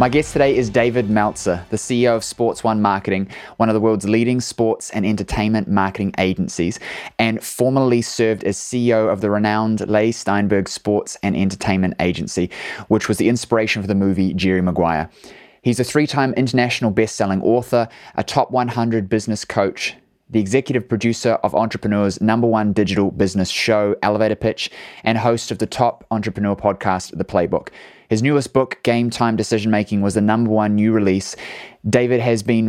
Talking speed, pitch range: 170 wpm, 100-115 Hz